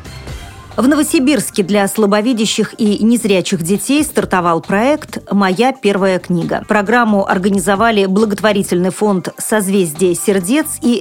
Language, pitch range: Russian, 190-235 Hz